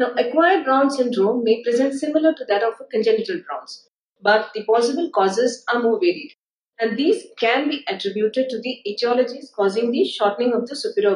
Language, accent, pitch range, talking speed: English, Indian, 205-255 Hz, 185 wpm